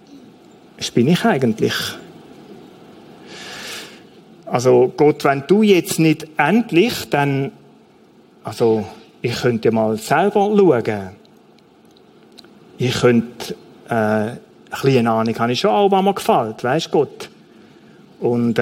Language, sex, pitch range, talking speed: German, male, 140-195 Hz, 105 wpm